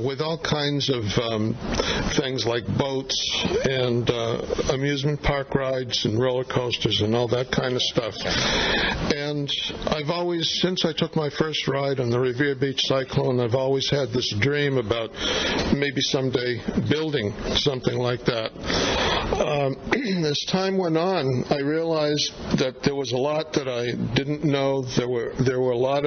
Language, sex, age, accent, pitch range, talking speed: English, male, 60-79, American, 125-150 Hz, 160 wpm